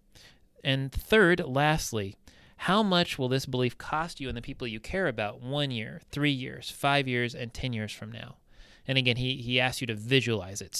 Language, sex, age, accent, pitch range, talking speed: English, male, 30-49, American, 110-140 Hz, 200 wpm